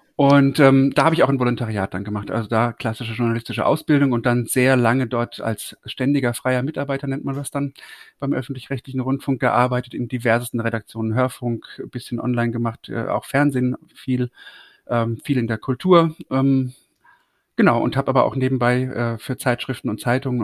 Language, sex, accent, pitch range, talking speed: German, male, German, 120-140 Hz, 180 wpm